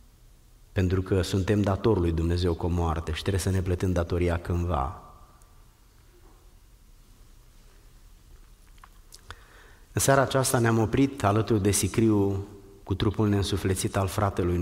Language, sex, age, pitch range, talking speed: Romanian, male, 30-49, 90-115 Hz, 110 wpm